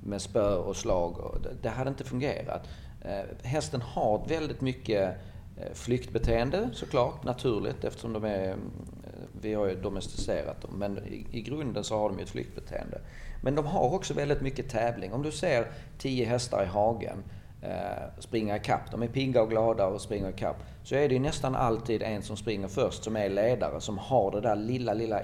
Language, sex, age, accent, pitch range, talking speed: Swedish, male, 40-59, native, 95-120 Hz, 180 wpm